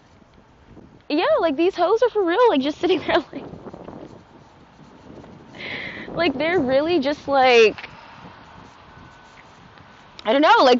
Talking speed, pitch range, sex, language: 115 wpm, 235-370 Hz, female, English